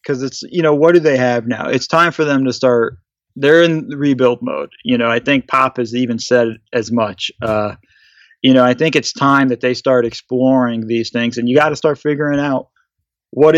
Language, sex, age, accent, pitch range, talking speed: English, male, 30-49, American, 120-135 Hz, 225 wpm